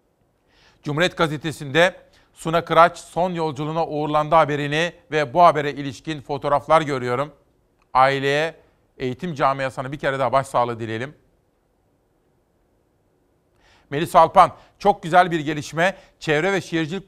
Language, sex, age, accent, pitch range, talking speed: Turkish, male, 40-59, native, 145-175 Hz, 110 wpm